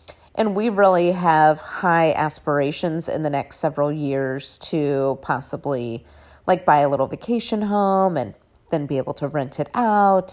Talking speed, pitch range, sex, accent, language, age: 155 wpm, 145-235 Hz, female, American, English, 30-49